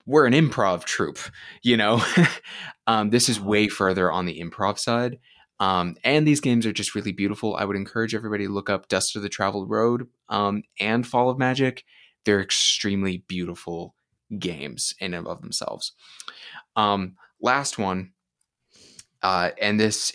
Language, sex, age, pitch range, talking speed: English, male, 20-39, 95-120 Hz, 160 wpm